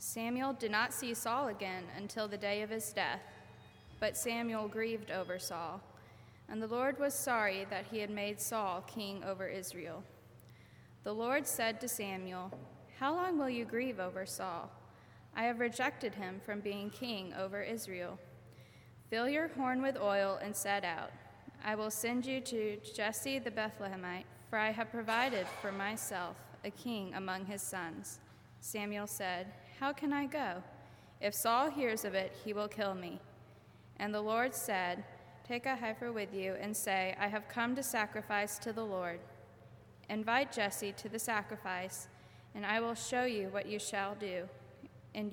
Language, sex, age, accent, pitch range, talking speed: English, female, 20-39, American, 185-230 Hz, 170 wpm